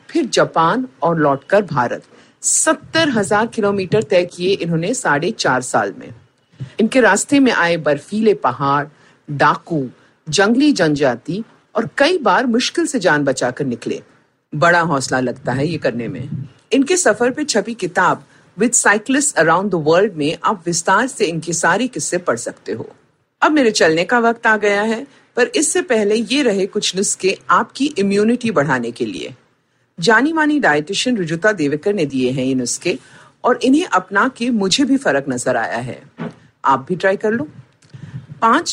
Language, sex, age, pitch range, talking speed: Hindi, female, 50-69, 145-240 Hz, 105 wpm